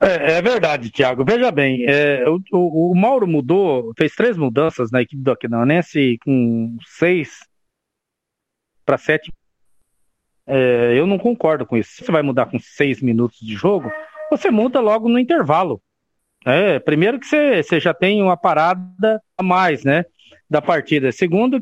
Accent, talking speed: Brazilian, 165 wpm